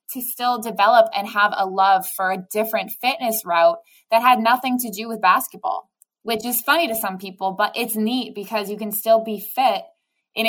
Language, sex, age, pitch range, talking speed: English, female, 20-39, 185-235 Hz, 200 wpm